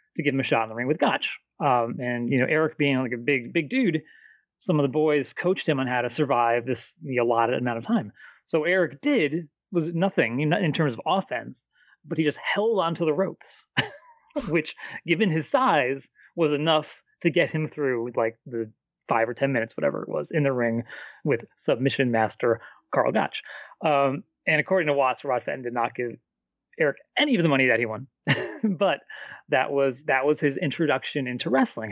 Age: 30-49